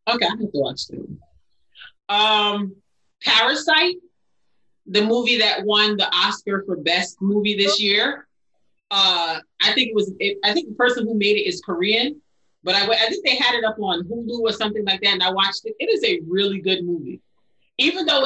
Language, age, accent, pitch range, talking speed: English, 30-49, American, 185-230 Hz, 195 wpm